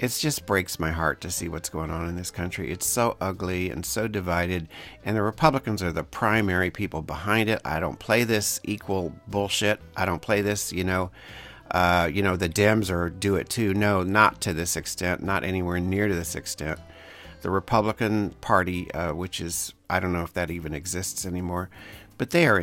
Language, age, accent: English, 50-69, American